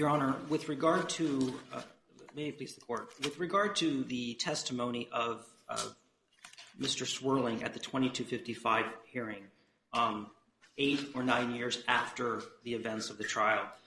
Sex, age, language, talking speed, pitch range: male, 40-59, English, 150 wpm, 125-160 Hz